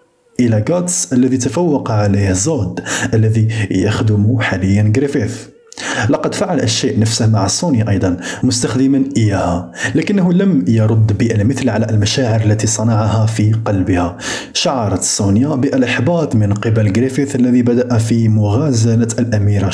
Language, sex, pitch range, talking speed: Arabic, male, 105-130 Hz, 120 wpm